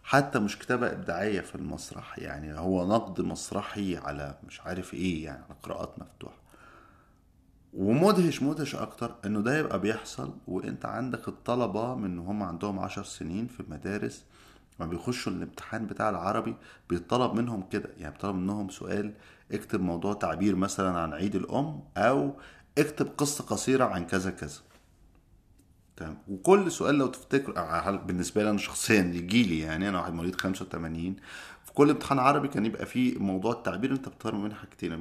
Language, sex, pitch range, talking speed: Arabic, male, 85-115 Hz, 155 wpm